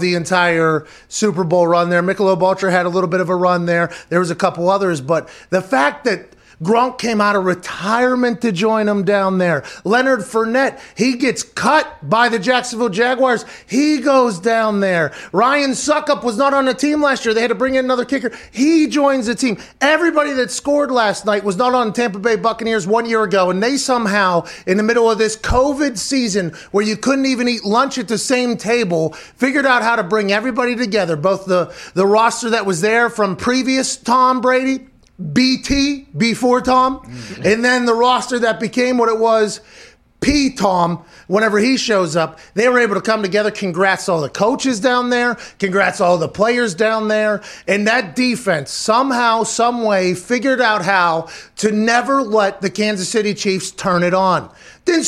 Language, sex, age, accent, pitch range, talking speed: English, male, 30-49, American, 195-255 Hz, 190 wpm